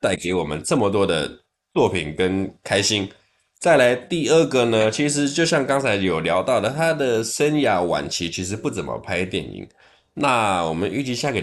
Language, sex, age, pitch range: Chinese, male, 20-39, 85-115 Hz